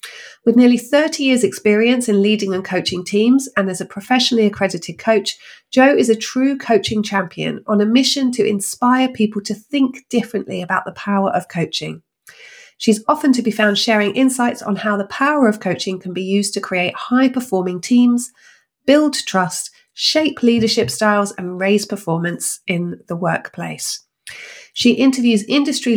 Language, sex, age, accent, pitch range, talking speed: English, female, 40-59, British, 190-235 Hz, 160 wpm